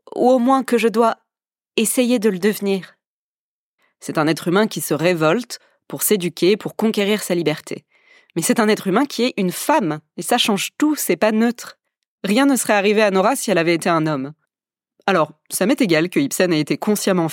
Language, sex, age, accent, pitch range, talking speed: French, female, 20-39, French, 170-220 Hz, 210 wpm